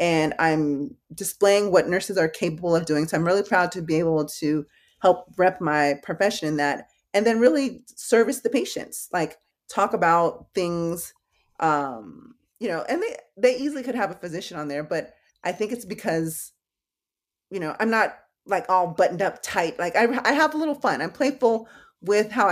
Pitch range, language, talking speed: 165-215 Hz, English, 190 wpm